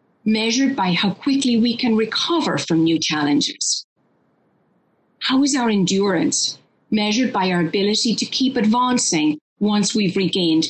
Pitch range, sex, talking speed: 185-260 Hz, female, 135 wpm